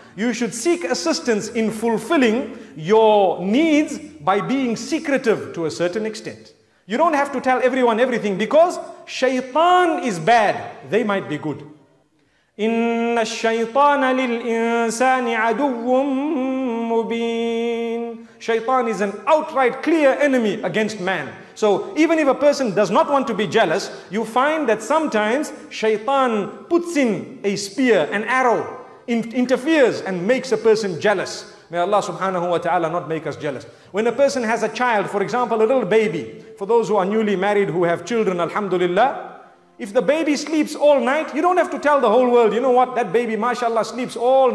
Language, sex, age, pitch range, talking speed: English, male, 40-59, 200-260 Hz, 170 wpm